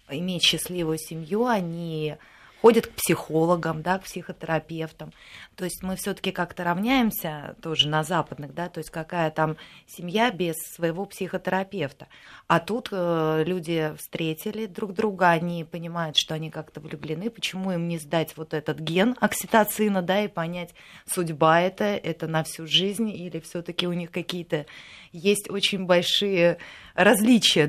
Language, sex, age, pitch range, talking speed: Russian, female, 20-39, 160-195 Hz, 150 wpm